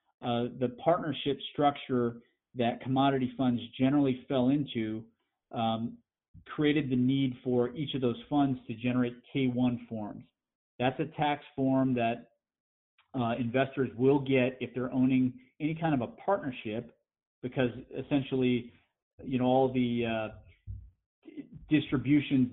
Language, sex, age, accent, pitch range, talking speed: English, male, 40-59, American, 120-140 Hz, 130 wpm